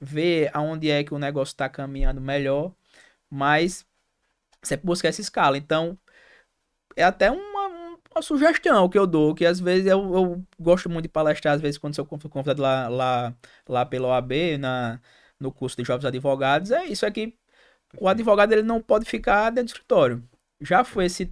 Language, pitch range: Portuguese, 140-185 Hz